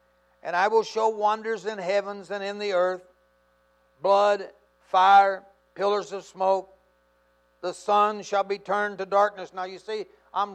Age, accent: 60-79, American